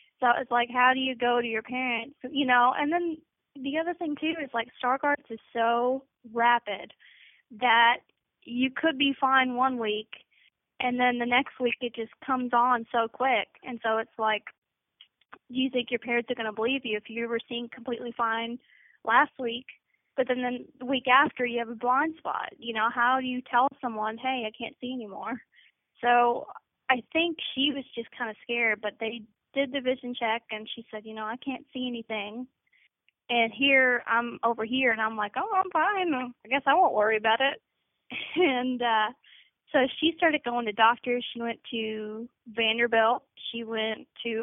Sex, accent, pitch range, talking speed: female, American, 230-265 Hz, 195 wpm